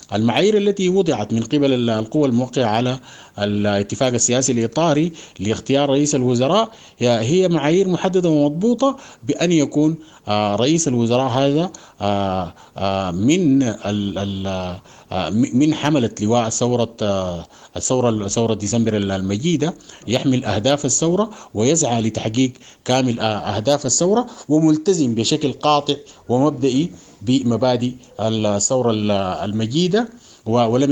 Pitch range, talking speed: 110-150 Hz, 85 wpm